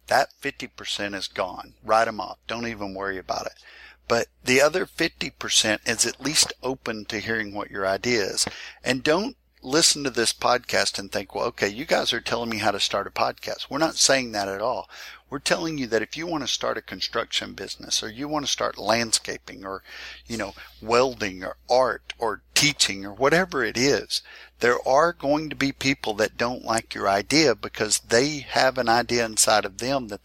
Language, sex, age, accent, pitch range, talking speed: English, male, 50-69, American, 105-145 Hz, 200 wpm